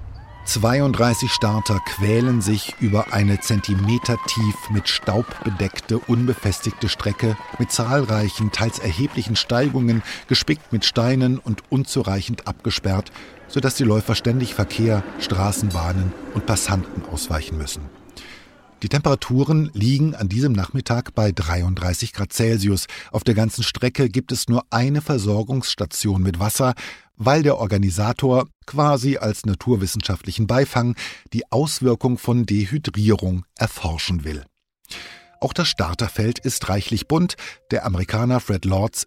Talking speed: 120 wpm